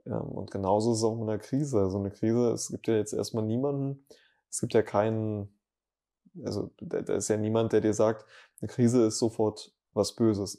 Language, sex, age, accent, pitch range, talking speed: German, male, 20-39, German, 105-115 Hz, 210 wpm